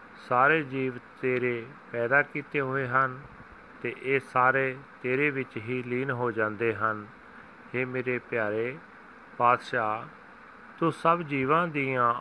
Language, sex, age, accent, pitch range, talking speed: English, male, 40-59, Indian, 115-145 Hz, 125 wpm